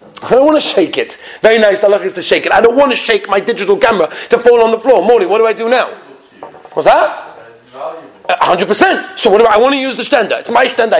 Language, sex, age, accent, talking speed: English, male, 40-59, British, 280 wpm